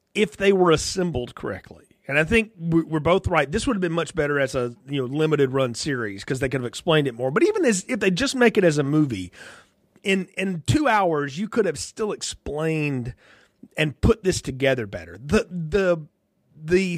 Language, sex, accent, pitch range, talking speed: English, male, American, 140-195 Hz, 210 wpm